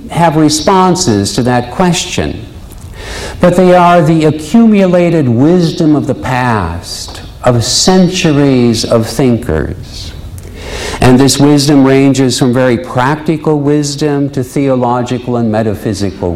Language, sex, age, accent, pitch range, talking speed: English, male, 60-79, American, 95-140 Hz, 110 wpm